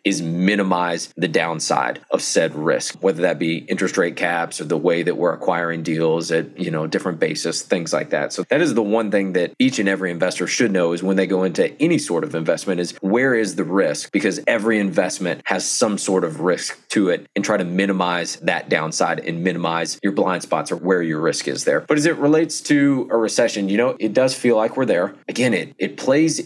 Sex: male